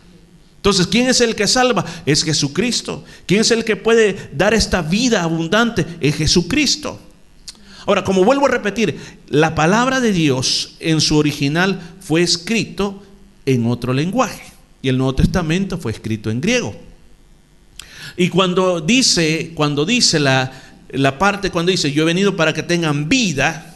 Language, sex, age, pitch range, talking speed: Spanish, male, 50-69, 140-195 Hz, 155 wpm